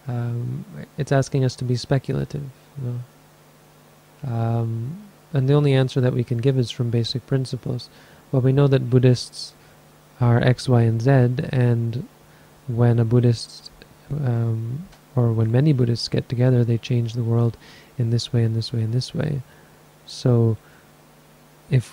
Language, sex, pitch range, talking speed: English, male, 115-140 Hz, 160 wpm